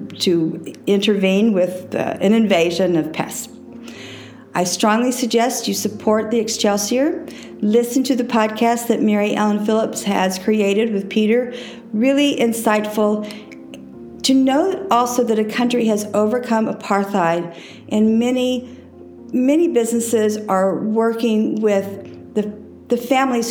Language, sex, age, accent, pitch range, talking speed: English, female, 50-69, American, 180-235 Hz, 120 wpm